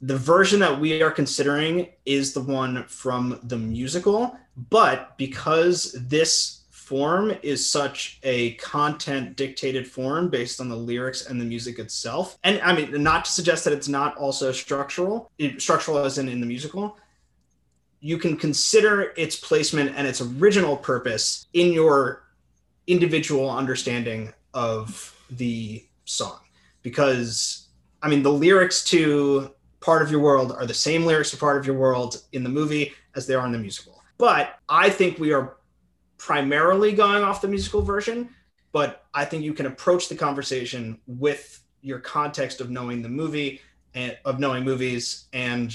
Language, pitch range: English, 115-155 Hz